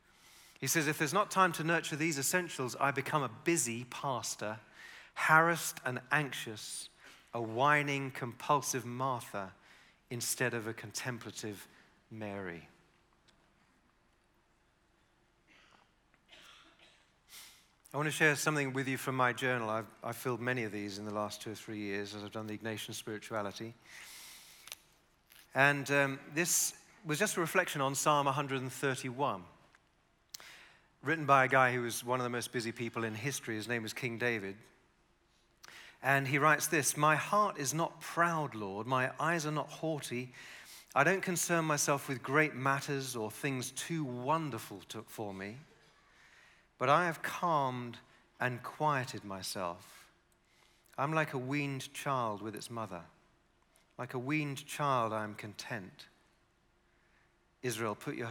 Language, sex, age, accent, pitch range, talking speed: English, male, 40-59, British, 115-150 Hz, 140 wpm